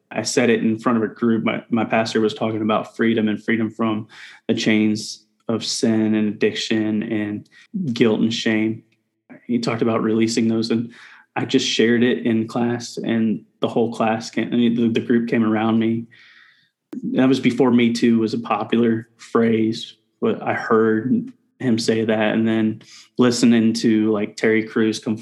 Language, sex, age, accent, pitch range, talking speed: English, male, 20-39, American, 110-115 Hz, 180 wpm